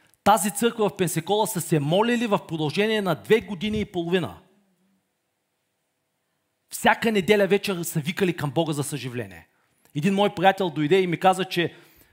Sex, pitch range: male, 155-205 Hz